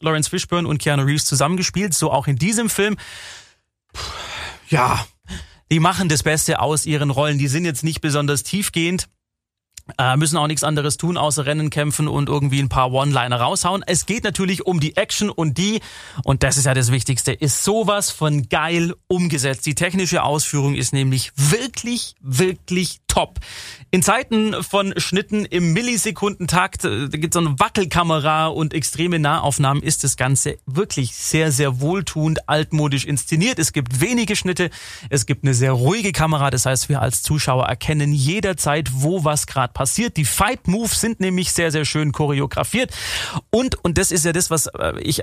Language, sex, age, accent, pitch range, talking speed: German, male, 30-49, German, 140-180 Hz, 170 wpm